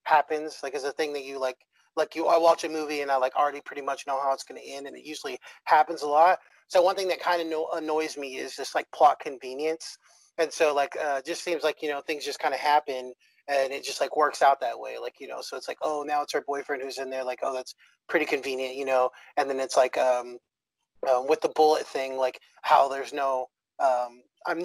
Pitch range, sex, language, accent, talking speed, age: 130-155 Hz, male, English, American, 255 wpm, 30-49